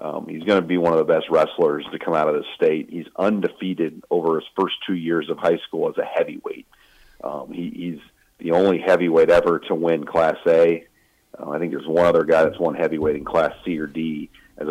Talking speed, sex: 225 wpm, male